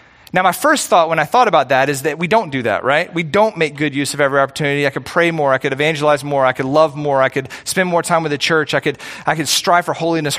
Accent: American